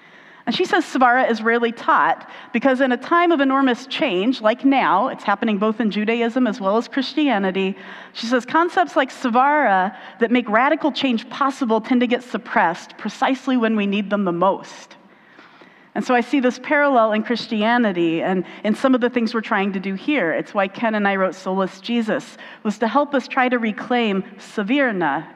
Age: 40-59